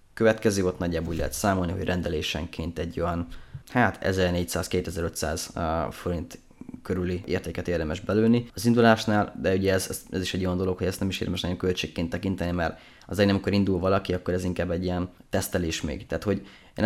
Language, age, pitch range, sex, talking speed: Hungarian, 20-39, 85-100 Hz, male, 180 wpm